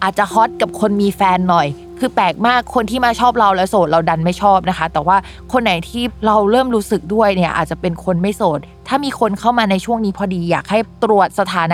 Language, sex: Thai, female